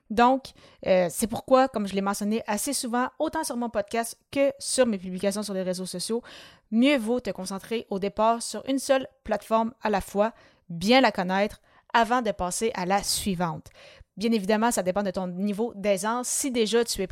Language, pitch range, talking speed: French, 195-235 Hz, 195 wpm